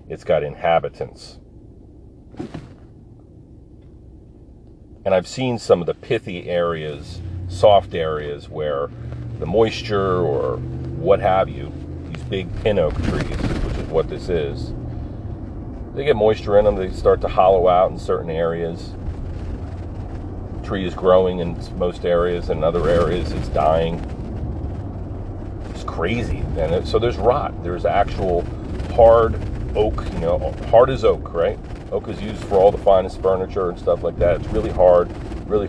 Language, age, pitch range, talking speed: English, 40-59, 85-100 Hz, 150 wpm